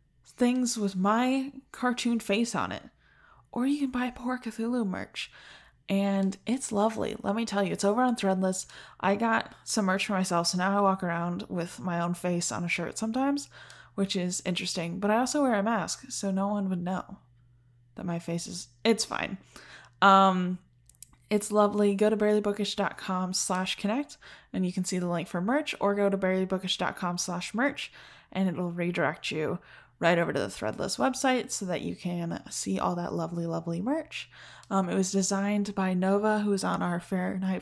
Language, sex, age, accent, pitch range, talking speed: English, female, 10-29, American, 175-210 Hz, 185 wpm